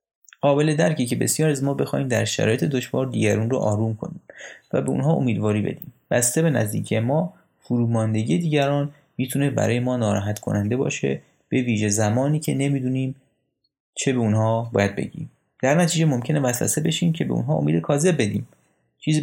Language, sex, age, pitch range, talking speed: Persian, male, 30-49, 110-145 Hz, 160 wpm